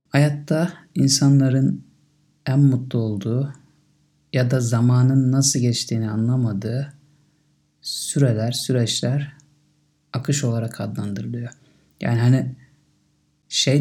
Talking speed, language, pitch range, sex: 85 wpm, Turkish, 120-140 Hz, male